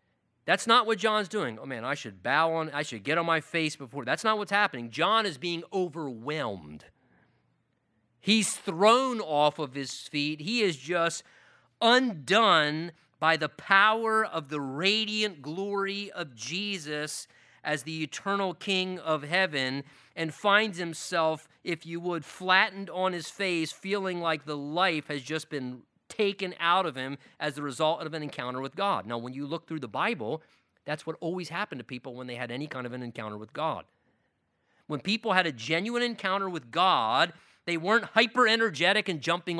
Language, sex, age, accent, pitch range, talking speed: English, male, 30-49, American, 140-190 Hz, 175 wpm